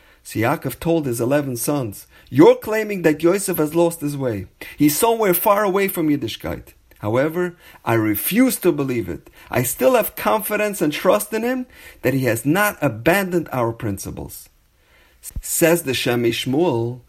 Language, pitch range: English, 115-170 Hz